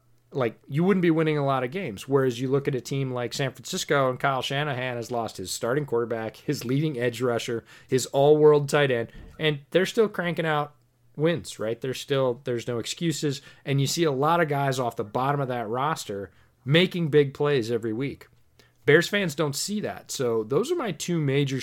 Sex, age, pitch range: male, 30-49, 110-140 Hz